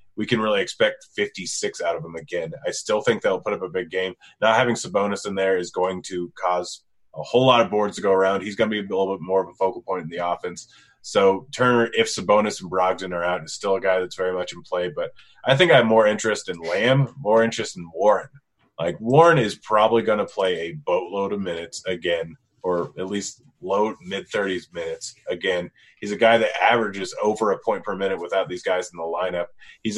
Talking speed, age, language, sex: 230 wpm, 20-39, English, male